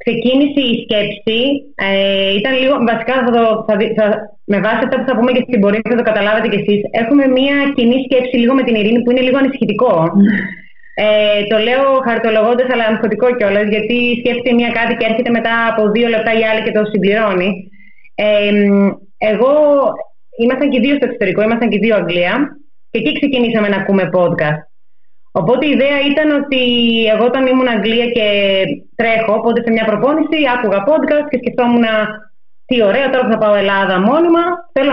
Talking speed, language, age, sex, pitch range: 180 wpm, Greek, 20-39, female, 205-260 Hz